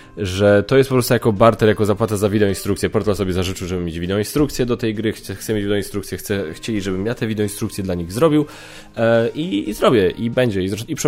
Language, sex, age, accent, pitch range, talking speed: Polish, male, 20-39, native, 95-115 Hz, 225 wpm